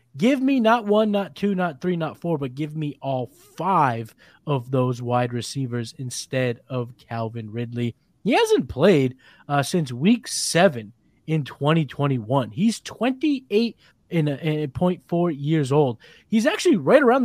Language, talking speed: English, 160 wpm